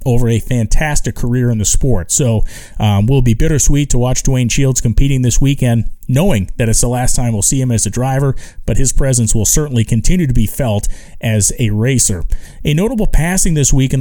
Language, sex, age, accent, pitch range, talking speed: English, male, 40-59, American, 115-145 Hz, 215 wpm